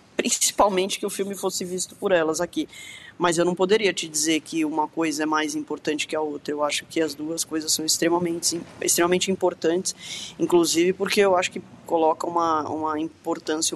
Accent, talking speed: Brazilian, 190 wpm